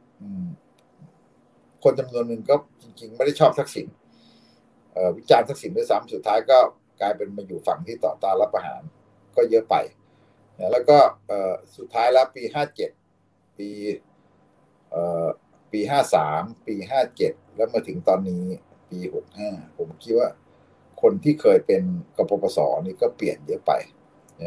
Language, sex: Thai, male